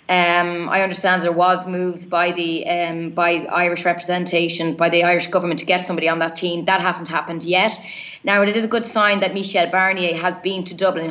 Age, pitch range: 20-39, 170-195 Hz